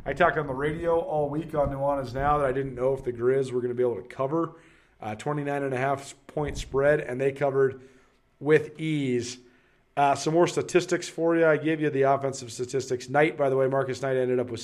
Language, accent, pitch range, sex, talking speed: English, American, 120-150 Hz, male, 220 wpm